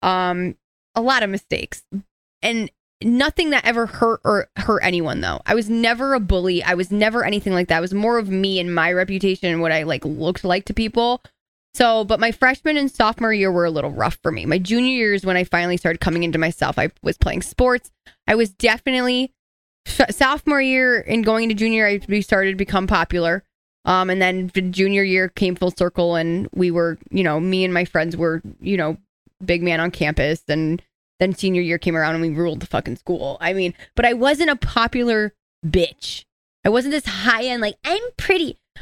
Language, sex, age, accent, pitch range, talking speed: English, female, 20-39, American, 180-230 Hz, 210 wpm